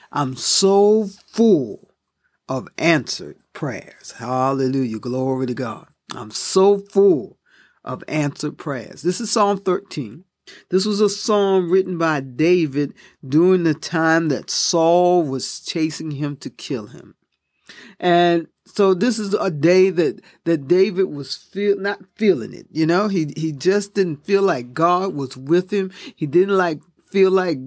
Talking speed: 150 wpm